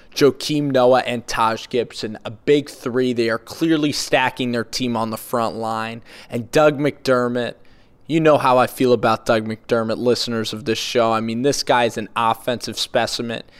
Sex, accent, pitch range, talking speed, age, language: male, American, 115-135 Hz, 180 wpm, 20-39, English